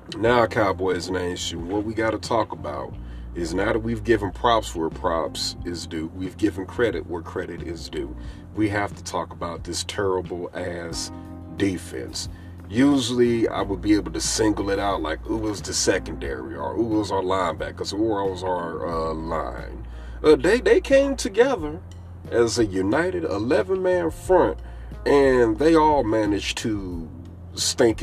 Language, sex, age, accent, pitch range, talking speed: English, male, 40-59, American, 85-105 Hz, 160 wpm